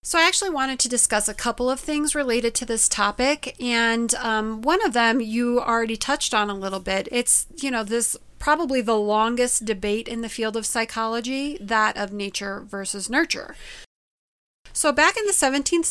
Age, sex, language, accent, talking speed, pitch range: 30-49, female, English, American, 185 wpm, 215-275 Hz